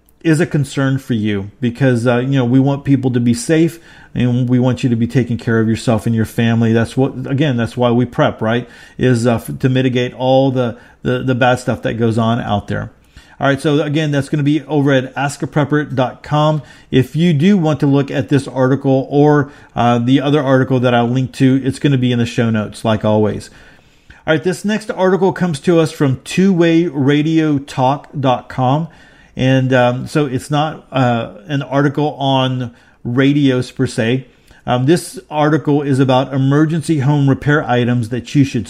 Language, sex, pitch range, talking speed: English, male, 125-145 Hz, 200 wpm